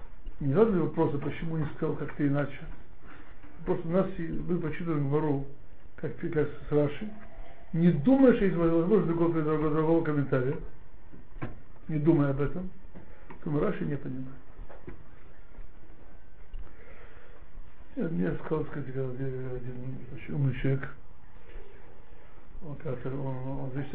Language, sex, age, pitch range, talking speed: Russian, male, 60-79, 135-165 Hz, 125 wpm